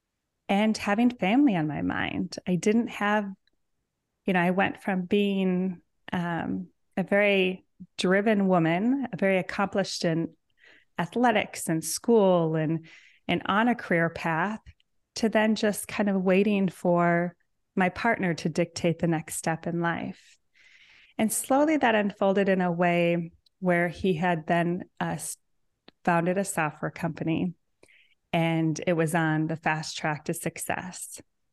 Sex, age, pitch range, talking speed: female, 30-49, 165-200 Hz, 140 wpm